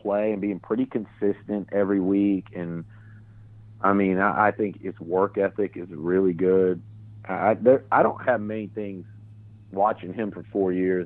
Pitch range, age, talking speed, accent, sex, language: 95-105 Hz, 40-59, 170 wpm, American, male, English